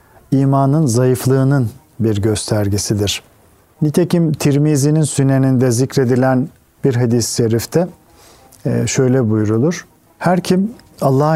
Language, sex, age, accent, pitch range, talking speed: Turkish, male, 50-69, native, 120-150 Hz, 85 wpm